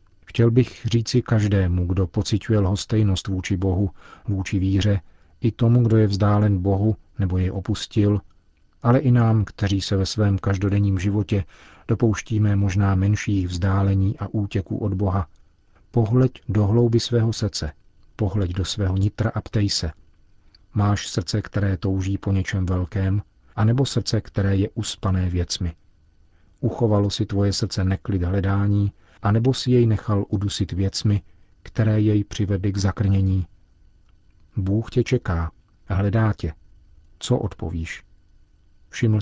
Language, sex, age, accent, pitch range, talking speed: Czech, male, 40-59, native, 95-105 Hz, 135 wpm